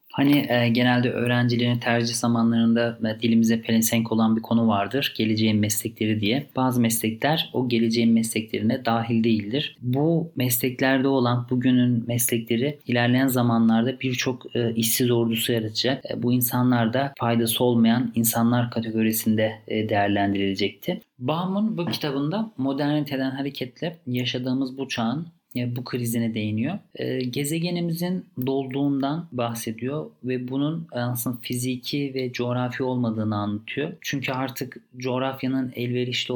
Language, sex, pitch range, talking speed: Turkish, male, 115-140 Hz, 120 wpm